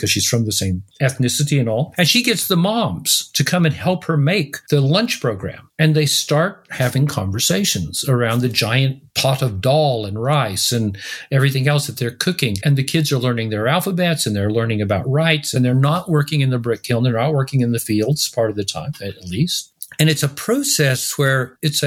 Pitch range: 120-155 Hz